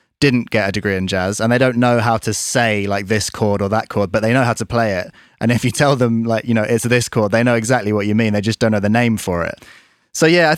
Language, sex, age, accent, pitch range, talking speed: English, male, 20-39, British, 100-120 Hz, 305 wpm